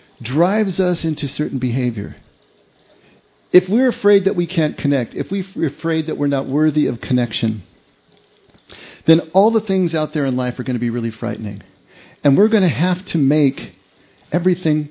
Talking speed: 175 wpm